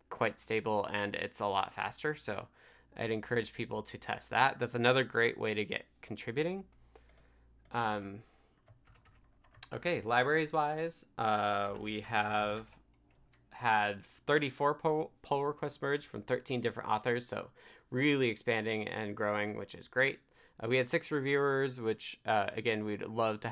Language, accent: English, American